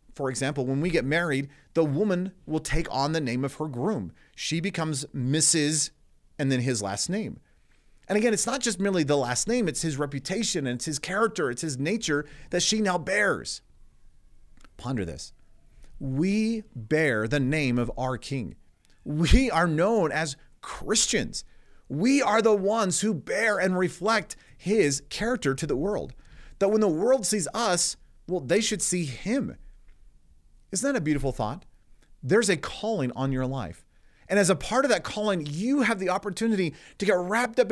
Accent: American